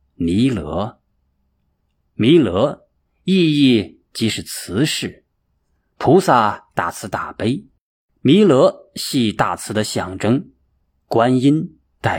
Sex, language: male, Chinese